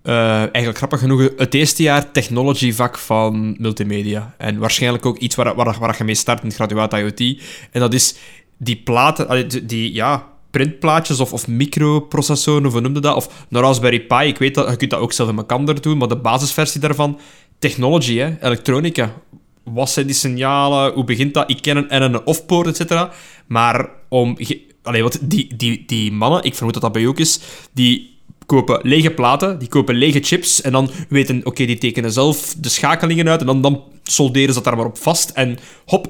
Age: 20-39